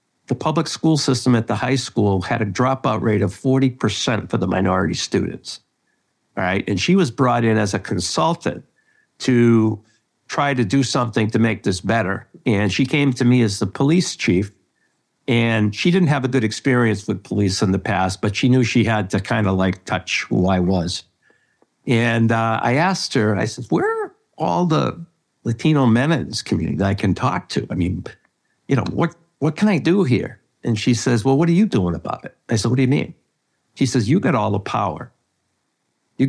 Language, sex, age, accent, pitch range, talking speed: English, male, 60-79, American, 105-140 Hz, 205 wpm